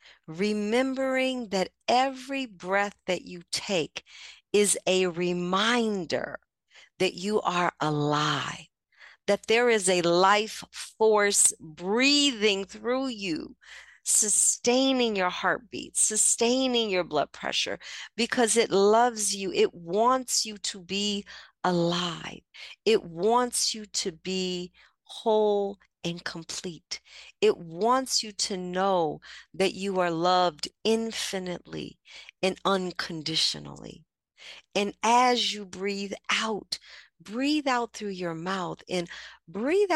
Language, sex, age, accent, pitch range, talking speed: English, female, 50-69, American, 170-230 Hz, 105 wpm